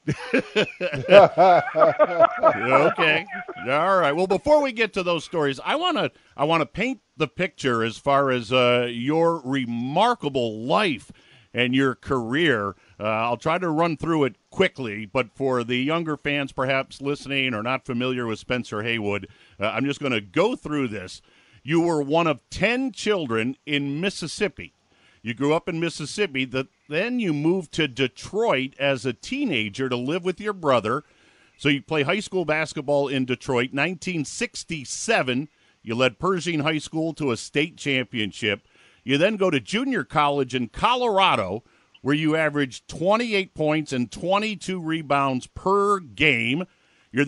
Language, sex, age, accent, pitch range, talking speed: English, male, 50-69, American, 130-185 Hz, 155 wpm